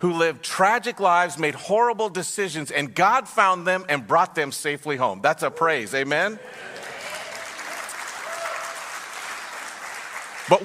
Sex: male